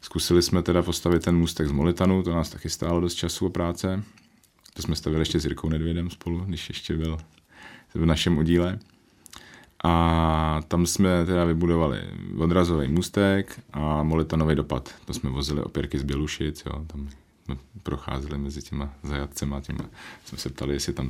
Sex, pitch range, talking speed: male, 75-85 Hz, 160 wpm